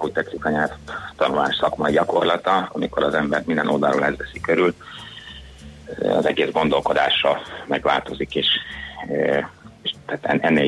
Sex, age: male, 30-49